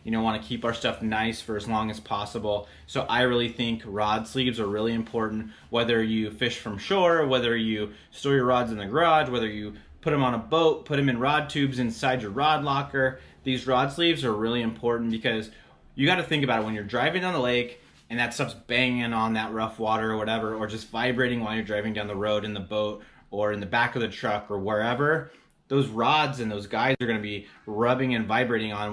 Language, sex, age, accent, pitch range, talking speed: English, male, 30-49, American, 110-130 Hz, 235 wpm